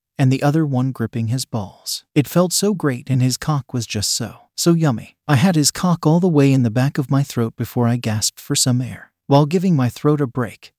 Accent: American